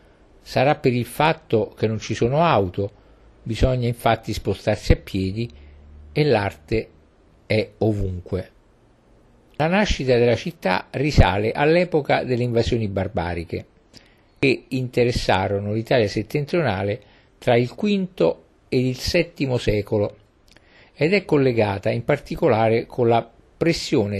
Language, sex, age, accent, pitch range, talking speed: Italian, male, 50-69, native, 100-135 Hz, 115 wpm